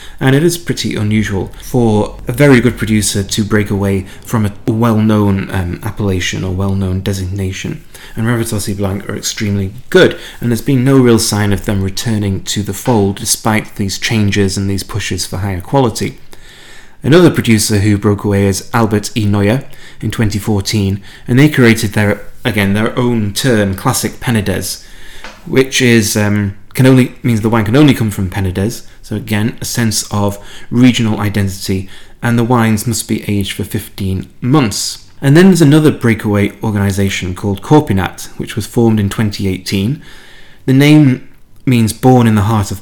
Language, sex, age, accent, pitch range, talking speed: English, male, 30-49, British, 100-120 Hz, 170 wpm